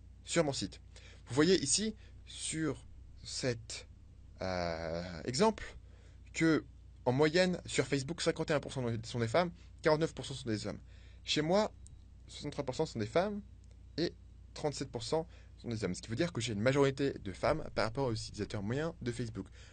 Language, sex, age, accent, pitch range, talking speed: French, male, 20-39, French, 90-125 Hz, 155 wpm